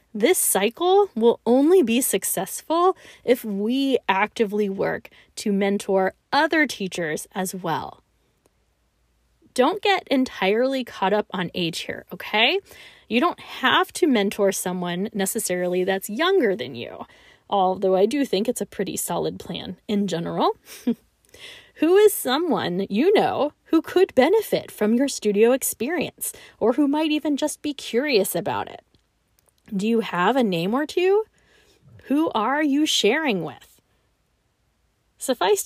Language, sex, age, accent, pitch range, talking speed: English, female, 20-39, American, 200-310 Hz, 135 wpm